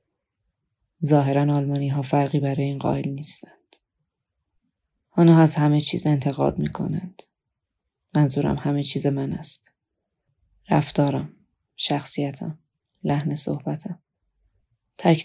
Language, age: Persian, 20-39